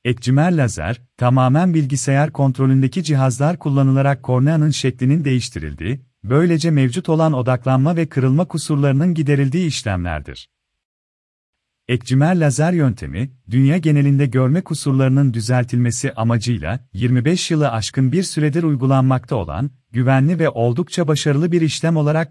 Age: 40-59